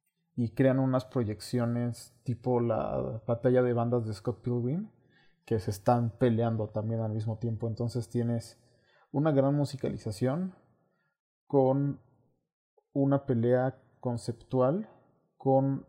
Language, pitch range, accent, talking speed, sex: Spanish, 115-130 Hz, Mexican, 115 wpm, male